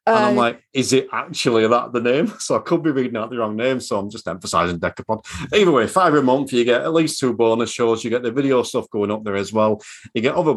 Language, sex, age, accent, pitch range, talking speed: English, male, 40-59, British, 110-145 Hz, 275 wpm